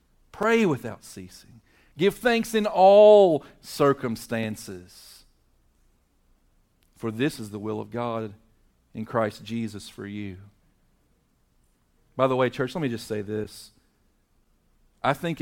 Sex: male